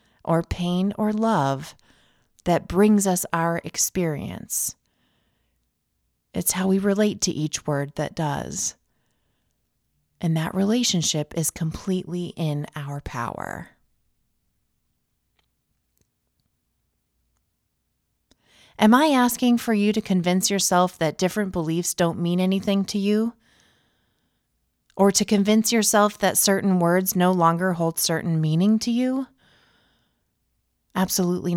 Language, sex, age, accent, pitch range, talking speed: English, female, 30-49, American, 165-215 Hz, 110 wpm